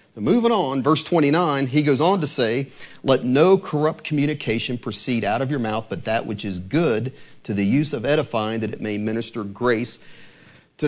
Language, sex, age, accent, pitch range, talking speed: English, male, 40-59, American, 125-180 Hz, 190 wpm